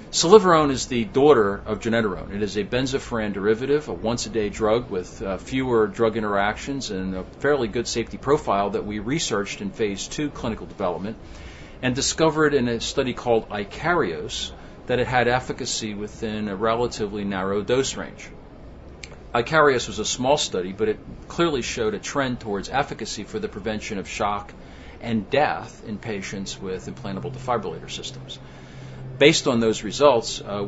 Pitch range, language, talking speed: 100-125 Hz, English, 160 wpm